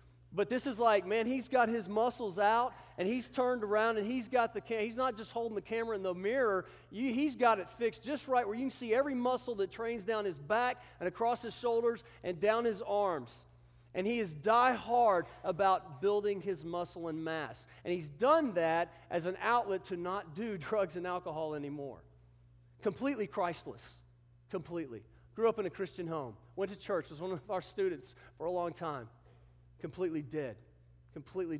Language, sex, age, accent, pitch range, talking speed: English, male, 40-59, American, 165-235 Hz, 195 wpm